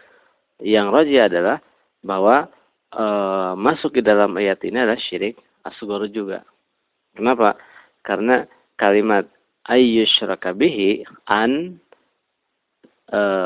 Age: 40-59